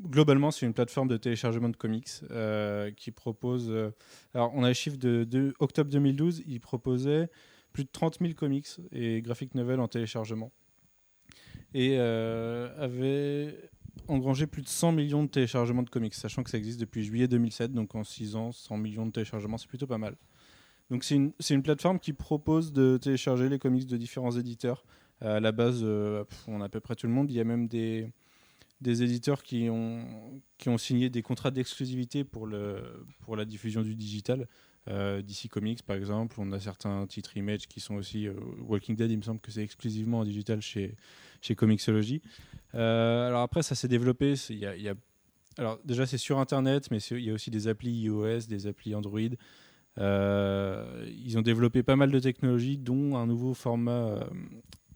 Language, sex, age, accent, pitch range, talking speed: French, male, 20-39, French, 110-135 Hz, 200 wpm